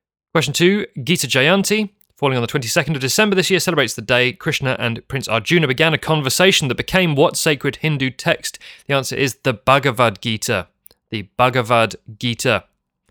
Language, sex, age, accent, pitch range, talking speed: English, male, 30-49, British, 115-155 Hz, 170 wpm